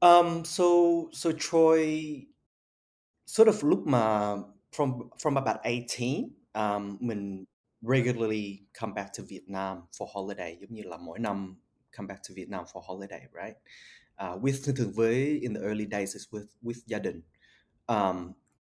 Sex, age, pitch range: male, 20-39, 100-135 Hz